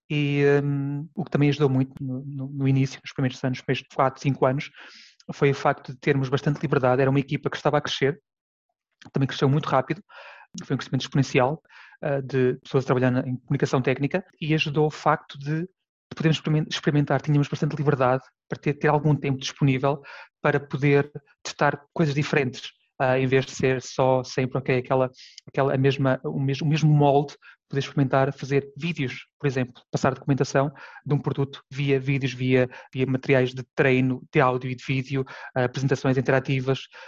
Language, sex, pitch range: Portuguese, male, 130-150 Hz